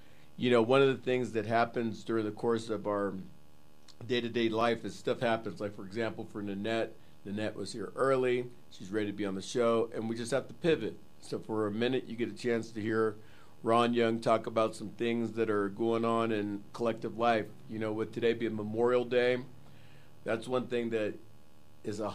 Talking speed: 205 wpm